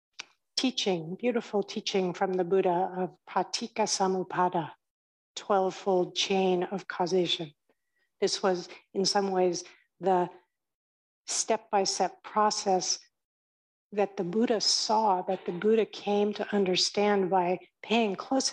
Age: 60-79